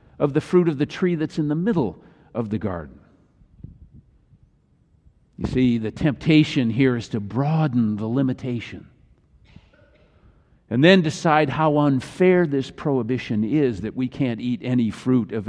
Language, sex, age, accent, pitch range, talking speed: English, male, 50-69, American, 115-155 Hz, 145 wpm